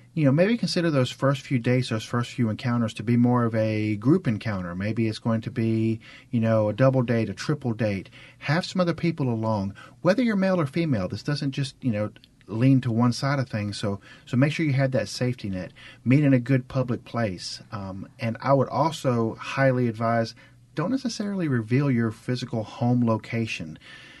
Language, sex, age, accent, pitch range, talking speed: English, male, 40-59, American, 105-130 Hz, 205 wpm